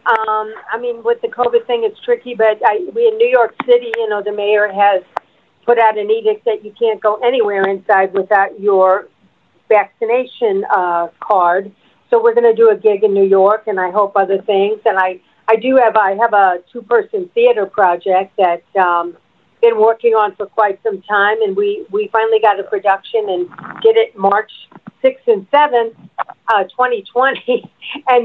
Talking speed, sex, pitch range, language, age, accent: 190 wpm, female, 195-255 Hz, English, 50-69, American